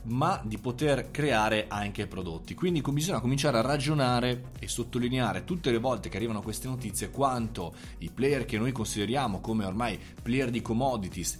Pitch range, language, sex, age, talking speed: 105-130 Hz, Italian, male, 20-39, 165 wpm